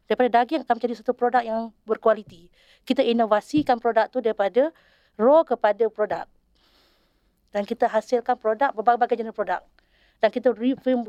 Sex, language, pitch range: female, English, 205-250 Hz